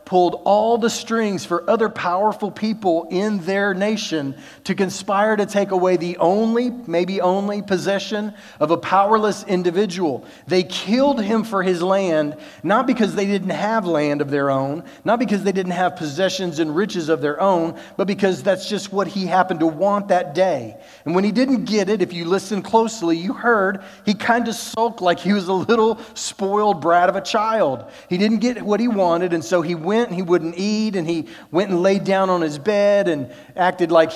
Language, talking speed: English, 200 wpm